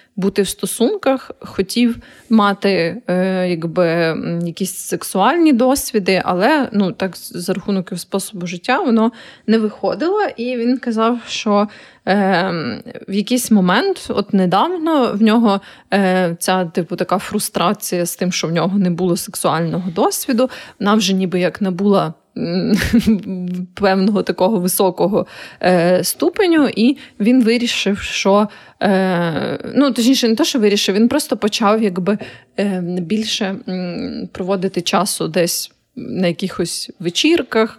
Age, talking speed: 20-39, 120 wpm